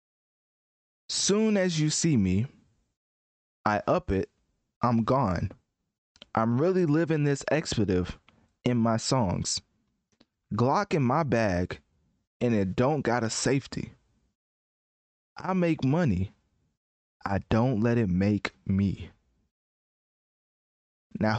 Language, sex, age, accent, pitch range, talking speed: English, male, 20-39, American, 100-125 Hz, 105 wpm